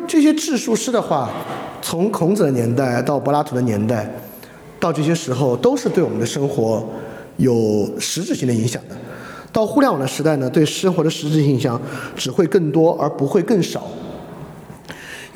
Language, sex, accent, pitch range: Chinese, male, native, 135-190 Hz